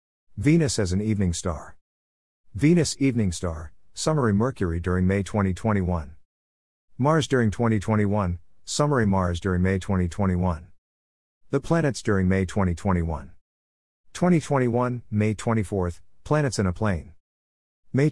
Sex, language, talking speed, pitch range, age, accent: male, English, 115 wpm, 90-115 Hz, 50-69, American